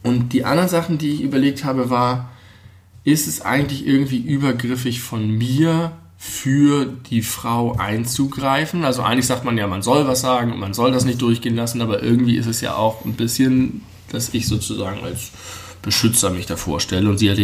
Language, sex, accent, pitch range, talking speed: German, male, German, 100-130 Hz, 190 wpm